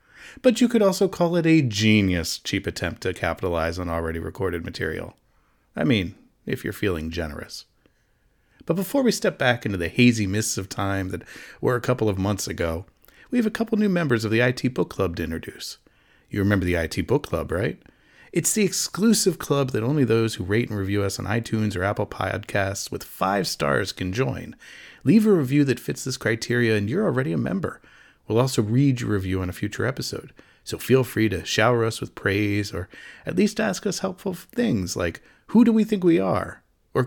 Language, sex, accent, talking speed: English, male, American, 205 wpm